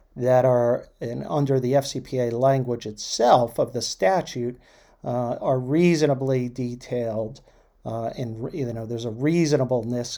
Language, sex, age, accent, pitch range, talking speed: English, male, 50-69, American, 120-140 Hz, 130 wpm